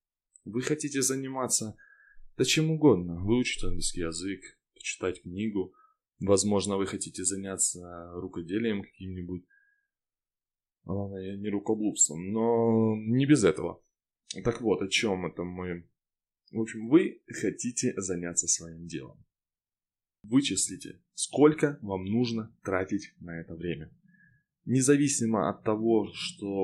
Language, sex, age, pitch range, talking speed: Russian, male, 20-39, 95-125 Hz, 110 wpm